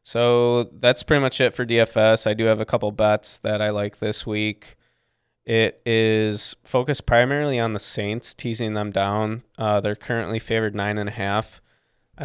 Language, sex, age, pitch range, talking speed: English, male, 20-39, 105-115 Hz, 160 wpm